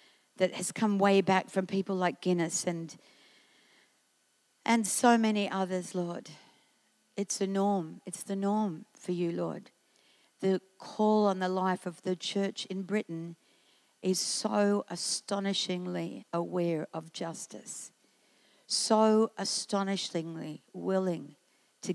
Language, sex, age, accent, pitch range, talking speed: English, female, 60-79, Australian, 180-215 Hz, 120 wpm